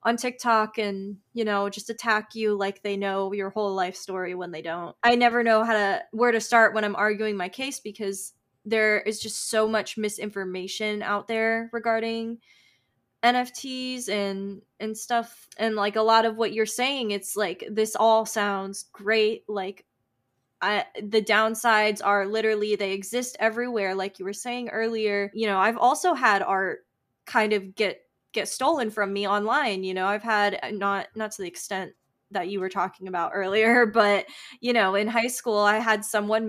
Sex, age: female, 20-39